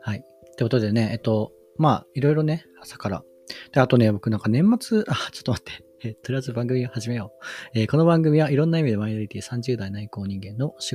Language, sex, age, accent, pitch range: Japanese, male, 40-59, native, 105-150 Hz